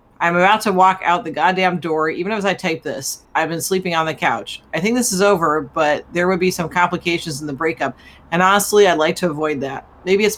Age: 40-59